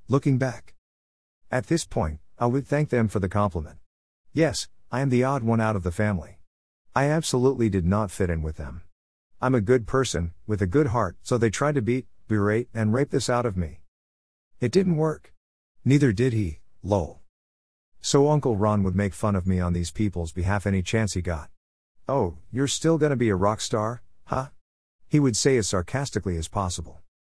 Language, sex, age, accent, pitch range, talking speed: English, male, 50-69, American, 85-120 Hz, 195 wpm